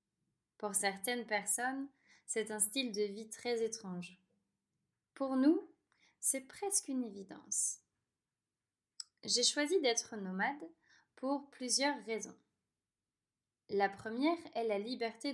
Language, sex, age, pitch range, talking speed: French, female, 20-39, 195-245 Hz, 110 wpm